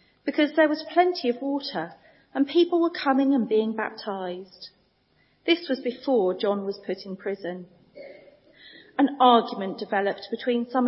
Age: 30-49